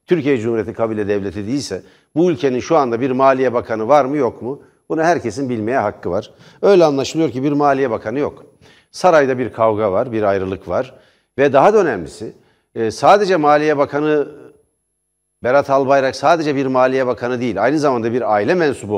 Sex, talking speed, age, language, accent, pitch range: male, 170 wpm, 60-79, Turkish, native, 125-180 Hz